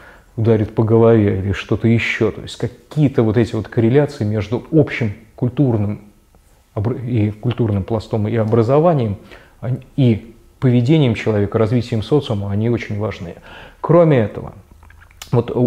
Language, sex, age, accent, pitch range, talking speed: Russian, male, 20-39, native, 110-140 Hz, 125 wpm